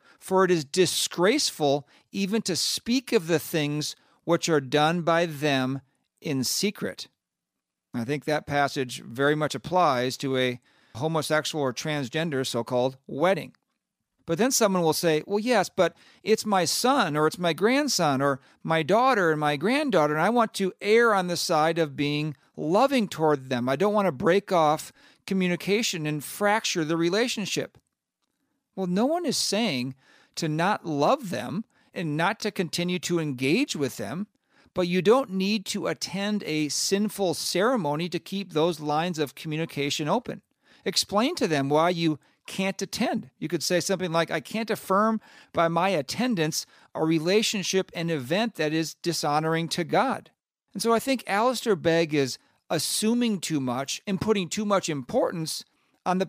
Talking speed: 165 wpm